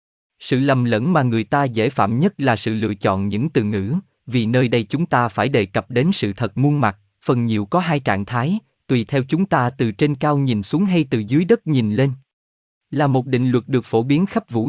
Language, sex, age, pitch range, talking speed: Vietnamese, male, 20-39, 110-155 Hz, 240 wpm